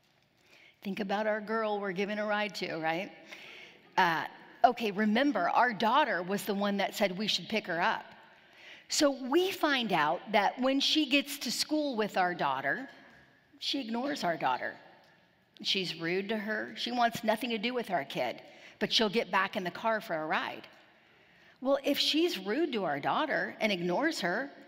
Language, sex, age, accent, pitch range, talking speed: English, female, 40-59, American, 210-285 Hz, 180 wpm